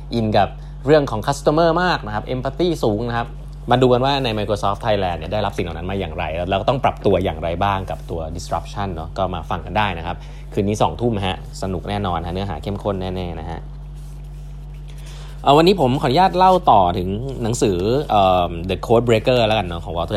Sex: male